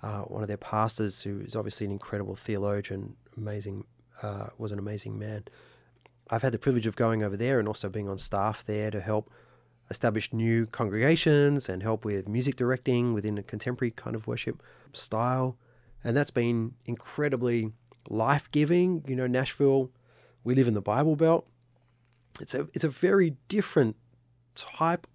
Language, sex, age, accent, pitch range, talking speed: English, male, 30-49, Australian, 110-130 Hz, 165 wpm